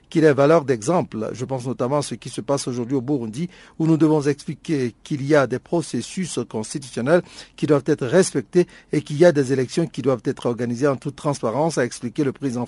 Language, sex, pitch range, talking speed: French, male, 130-160 Hz, 220 wpm